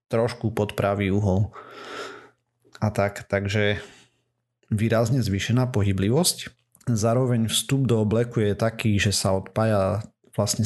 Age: 30-49